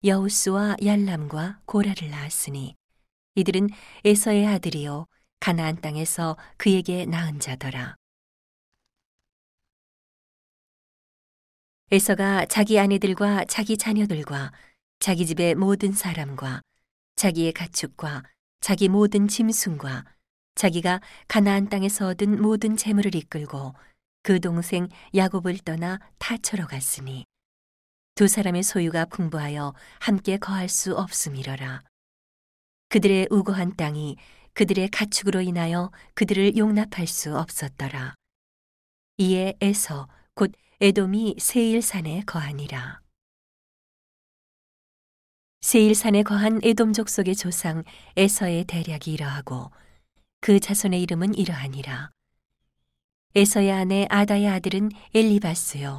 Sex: female